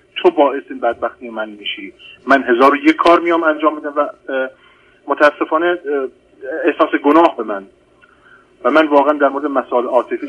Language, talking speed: Persian, 150 wpm